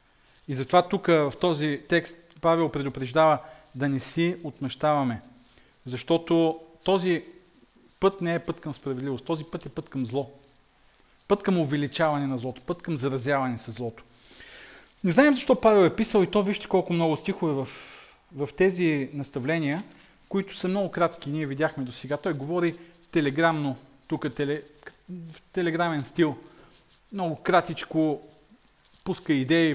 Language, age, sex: Bulgarian, 40-59, male